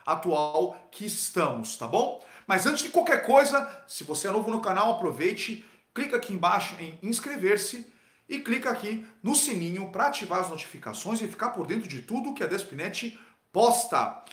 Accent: Brazilian